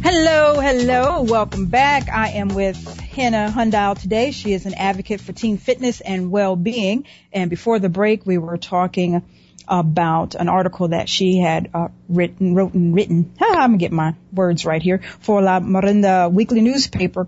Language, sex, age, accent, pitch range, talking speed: English, female, 40-59, American, 175-210 Hz, 175 wpm